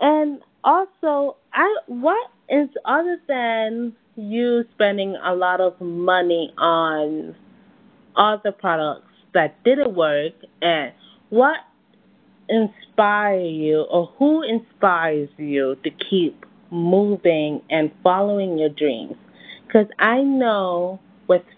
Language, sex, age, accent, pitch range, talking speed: English, female, 20-39, American, 165-225 Hz, 105 wpm